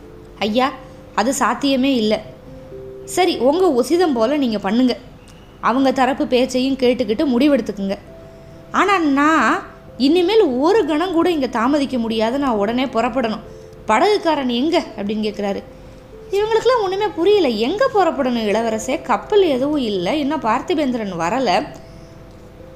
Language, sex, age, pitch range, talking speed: Tamil, female, 20-39, 230-330 Hz, 115 wpm